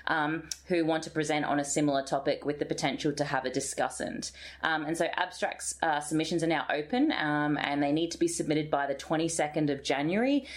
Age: 30-49